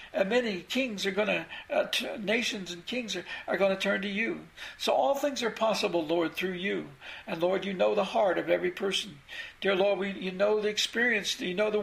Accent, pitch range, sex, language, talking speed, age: American, 185-220 Hz, male, English, 220 wpm, 60-79